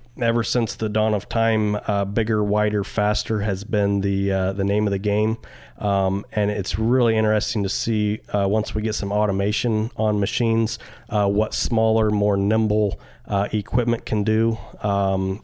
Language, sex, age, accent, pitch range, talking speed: English, male, 30-49, American, 100-115 Hz, 170 wpm